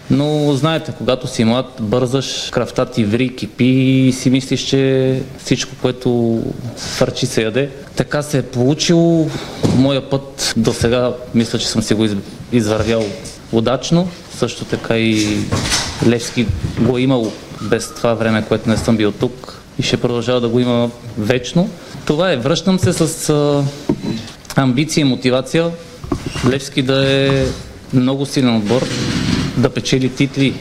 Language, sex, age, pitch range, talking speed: Bulgarian, male, 20-39, 120-135 Hz, 145 wpm